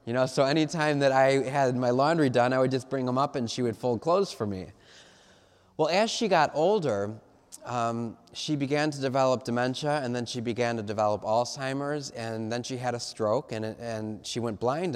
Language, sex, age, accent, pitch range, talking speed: English, male, 20-39, American, 115-150 Hz, 215 wpm